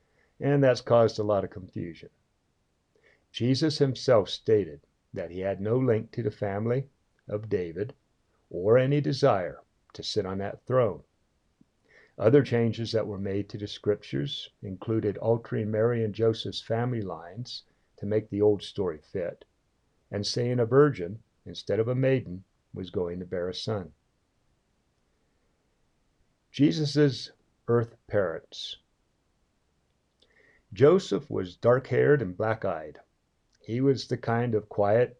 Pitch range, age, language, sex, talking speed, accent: 105-125 Hz, 50-69, English, male, 130 wpm, American